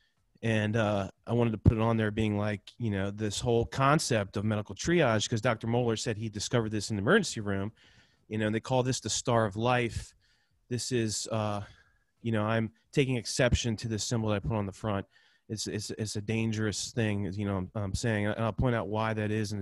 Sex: male